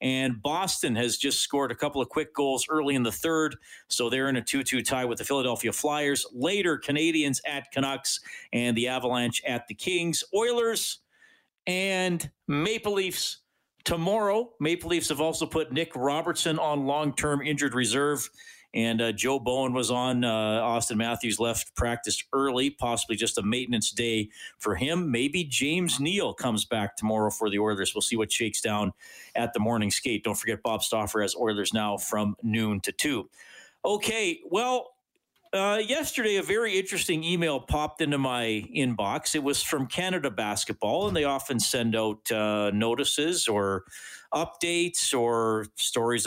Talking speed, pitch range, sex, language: 165 wpm, 115-170 Hz, male, English